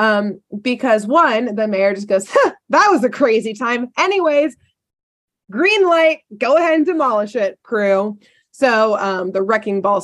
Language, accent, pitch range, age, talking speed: English, American, 185-245 Hz, 20-39, 160 wpm